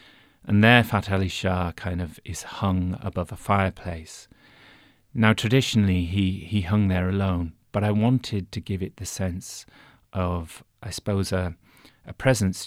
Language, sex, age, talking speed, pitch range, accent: English, male, 40-59, 150 wpm, 90-105 Hz, British